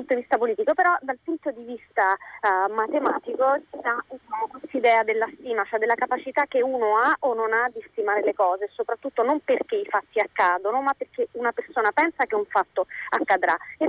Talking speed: 195 wpm